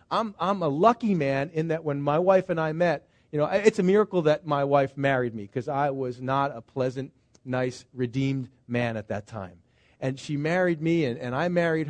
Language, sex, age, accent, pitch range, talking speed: English, male, 40-59, American, 135-175 Hz, 215 wpm